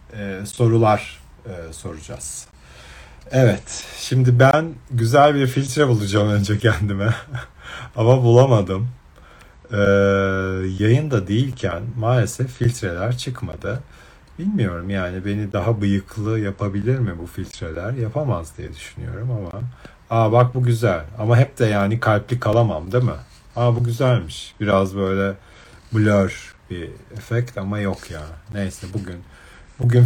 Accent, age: native, 50-69